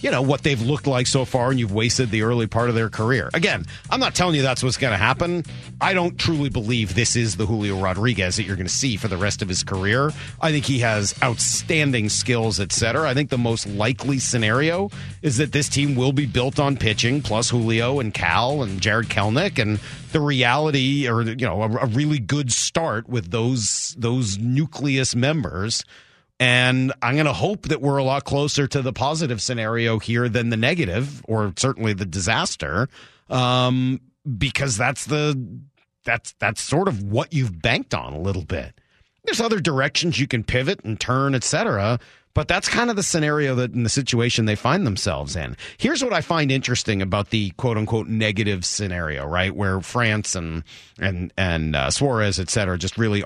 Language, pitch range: English, 105-140 Hz